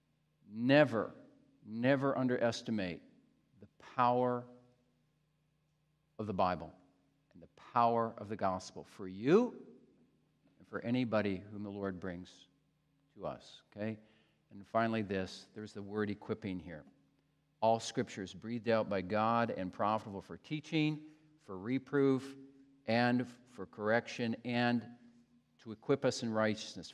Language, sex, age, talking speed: English, male, 50-69, 120 wpm